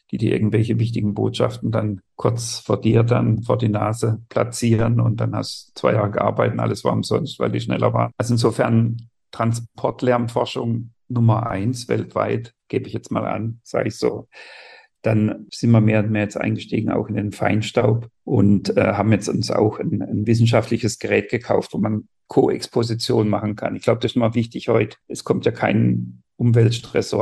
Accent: German